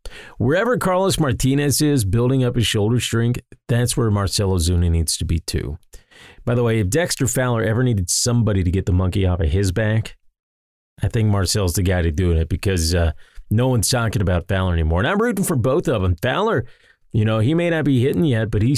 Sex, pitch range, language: male, 95-130 Hz, English